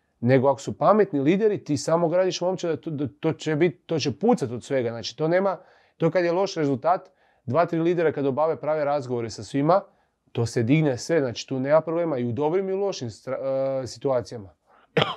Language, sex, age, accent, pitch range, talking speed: Croatian, male, 30-49, Serbian, 130-165 Hz, 195 wpm